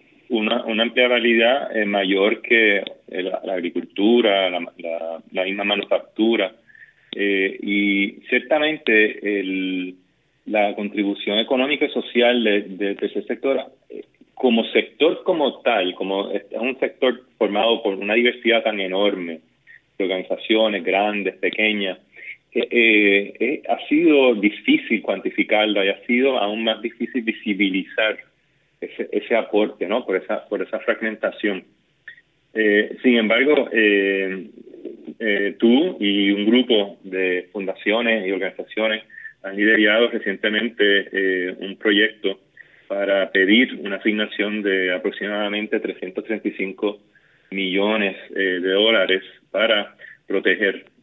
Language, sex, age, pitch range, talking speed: Spanish, male, 30-49, 95-115 Hz, 120 wpm